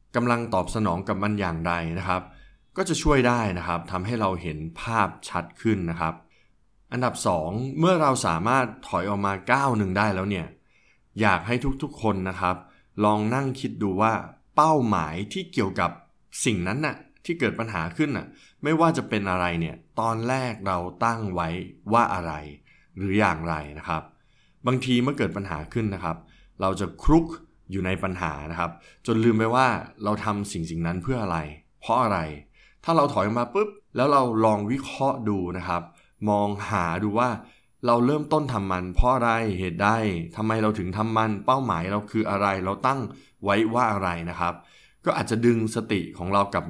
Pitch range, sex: 90-120 Hz, male